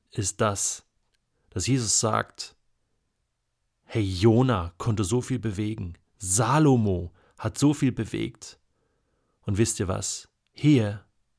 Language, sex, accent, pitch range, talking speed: German, male, German, 105-150 Hz, 110 wpm